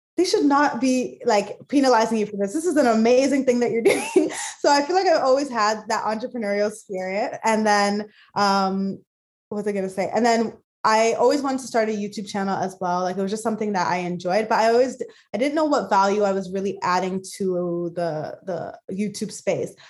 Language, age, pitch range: English, 20-39, 200-255 Hz